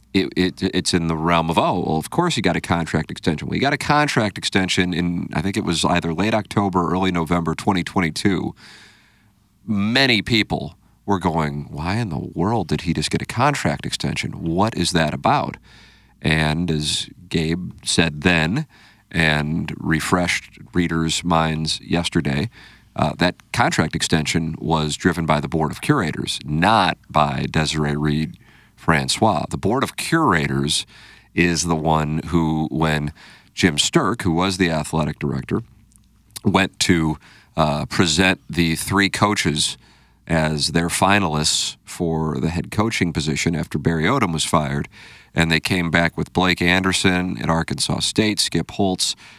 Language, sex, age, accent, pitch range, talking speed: English, male, 40-59, American, 80-95 Hz, 155 wpm